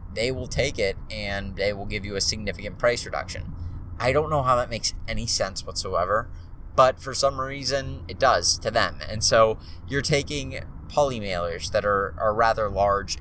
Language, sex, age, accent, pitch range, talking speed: English, male, 20-39, American, 90-125 Hz, 180 wpm